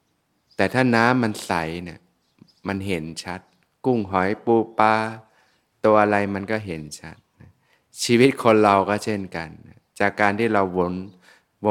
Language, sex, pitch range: Thai, male, 95-110 Hz